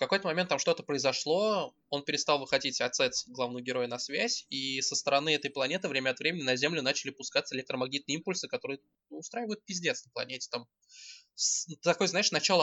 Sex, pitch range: male, 125-175 Hz